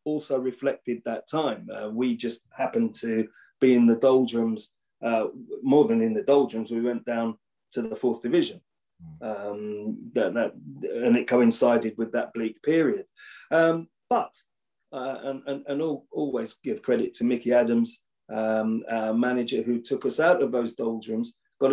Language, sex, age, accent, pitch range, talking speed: English, male, 30-49, British, 120-170 Hz, 155 wpm